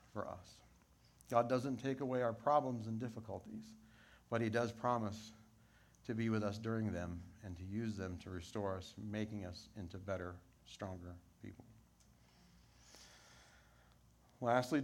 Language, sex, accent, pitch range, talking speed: English, male, American, 95-120 Hz, 140 wpm